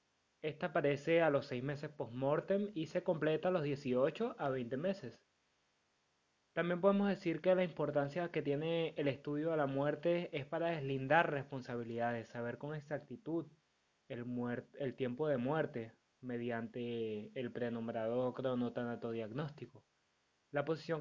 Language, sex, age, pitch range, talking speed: Spanish, male, 20-39, 125-155 Hz, 135 wpm